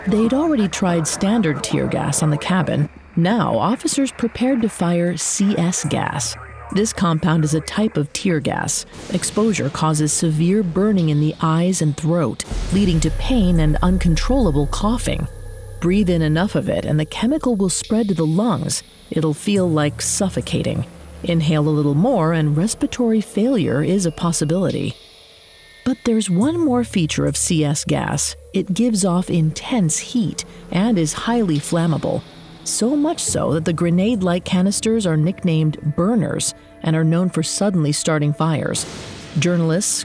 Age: 40-59